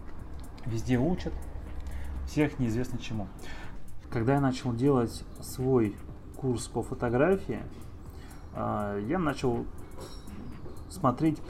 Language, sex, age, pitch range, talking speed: Russian, male, 30-49, 100-125 Hz, 85 wpm